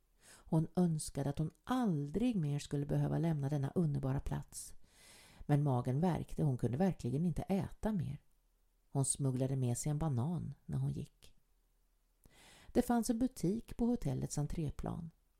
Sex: female